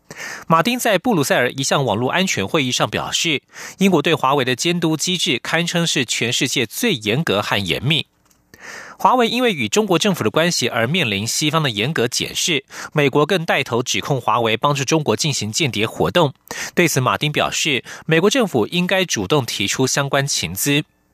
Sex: male